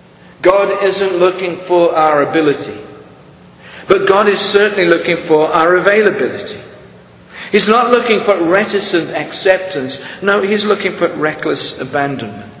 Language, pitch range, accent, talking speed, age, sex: English, 125-190 Hz, British, 125 wpm, 50-69, male